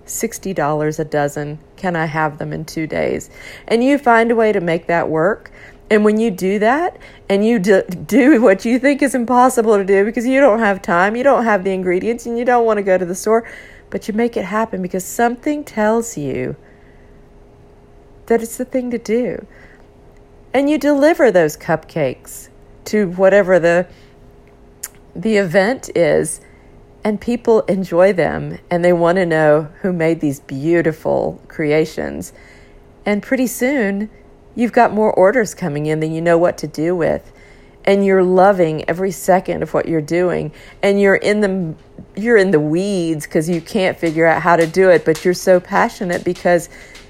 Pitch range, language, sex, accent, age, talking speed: 175-230 Hz, English, female, American, 50-69, 180 wpm